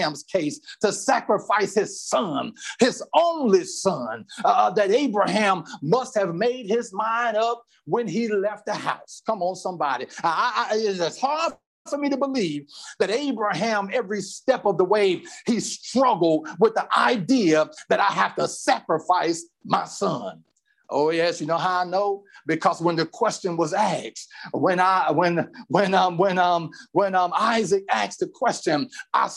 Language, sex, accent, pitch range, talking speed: English, male, American, 175-250 Hz, 160 wpm